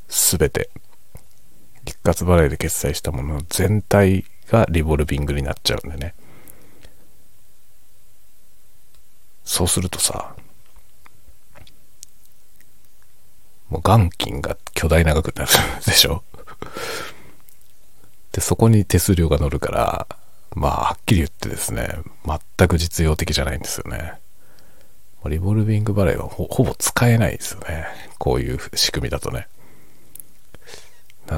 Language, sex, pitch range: Japanese, male, 80-105 Hz